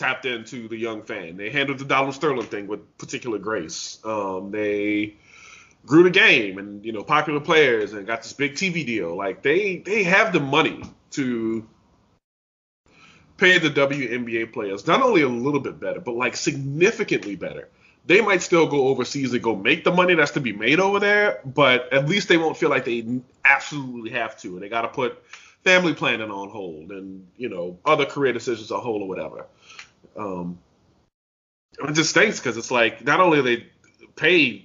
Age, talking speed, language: 20-39, 185 wpm, English